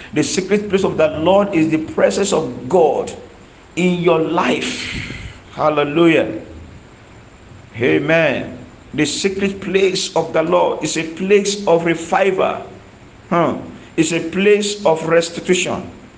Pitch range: 160-195 Hz